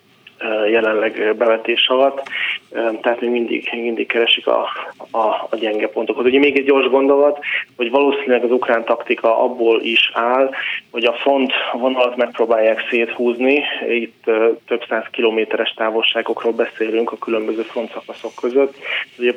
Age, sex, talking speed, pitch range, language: 20-39, male, 135 wpm, 115-120 Hz, Hungarian